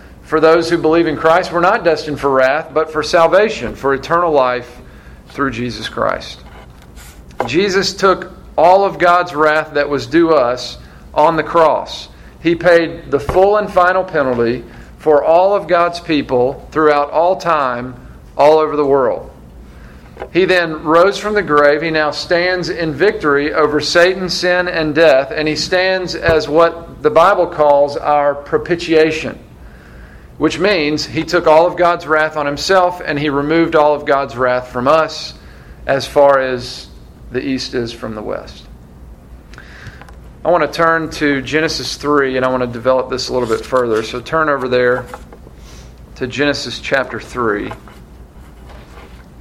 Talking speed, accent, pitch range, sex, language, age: 160 wpm, American, 120-165 Hz, male, English, 50-69